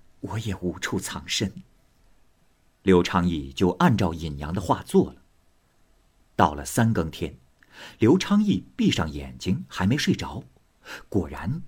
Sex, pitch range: male, 85-105 Hz